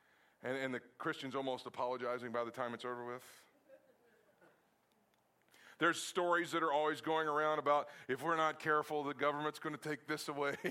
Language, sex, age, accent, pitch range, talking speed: English, male, 40-59, American, 125-160 Hz, 175 wpm